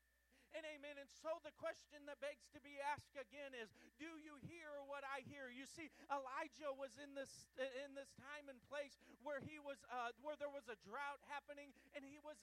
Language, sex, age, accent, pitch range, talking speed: English, male, 40-59, American, 265-295 Hz, 210 wpm